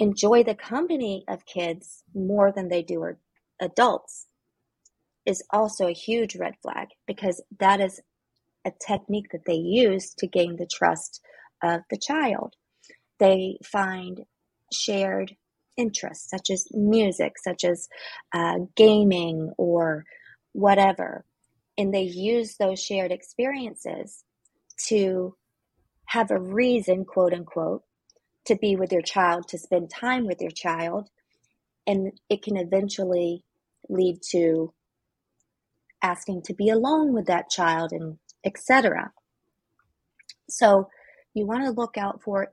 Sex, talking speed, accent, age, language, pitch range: female, 125 wpm, American, 30-49, English, 175-220 Hz